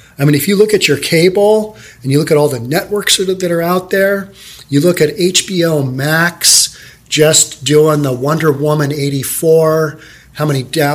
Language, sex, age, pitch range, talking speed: English, male, 40-59, 140-180 Hz, 175 wpm